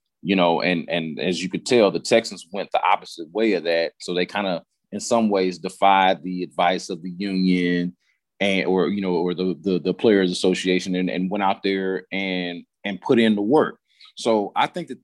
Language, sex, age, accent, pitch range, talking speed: English, male, 30-49, American, 90-125 Hz, 215 wpm